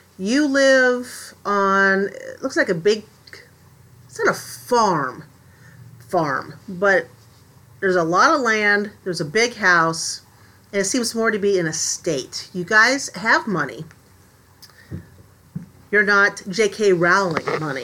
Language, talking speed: English, 140 wpm